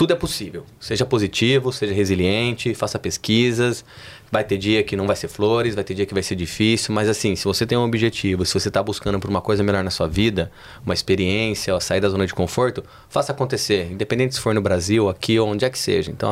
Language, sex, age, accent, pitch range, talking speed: Portuguese, male, 20-39, Brazilian, 100-120 Hz, 235 wpm